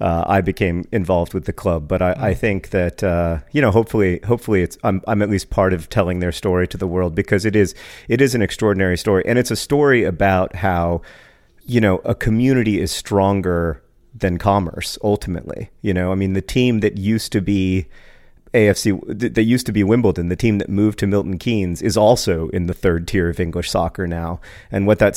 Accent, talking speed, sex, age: American, 215 wpm, male, 40-59